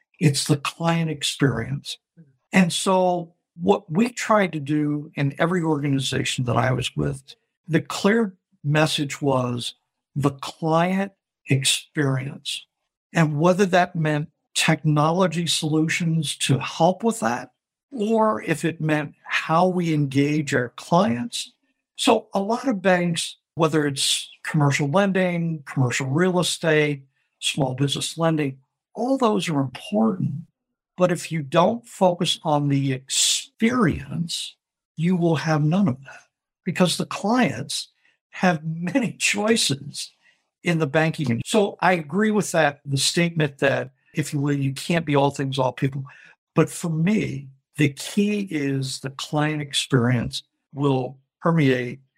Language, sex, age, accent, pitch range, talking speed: English, male, 60-79, American, 140-180 Hz, 130 wpm